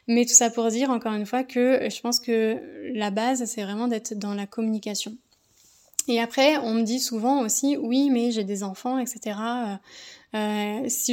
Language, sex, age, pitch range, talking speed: French, female, 20-39, 215-255 Hz, 190 wpm